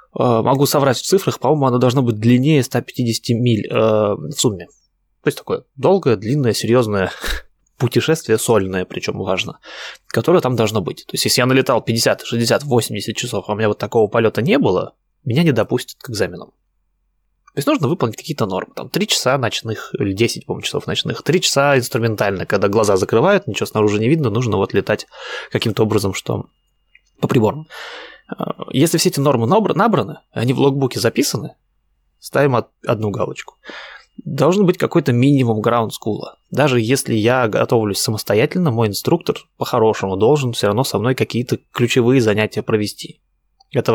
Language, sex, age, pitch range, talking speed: Russian, male, 20-39, 110-135 Hz, 160 wpm